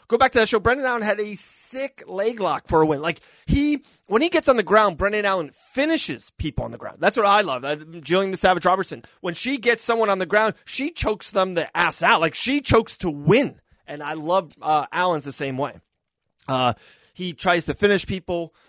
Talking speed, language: 220 wpm, English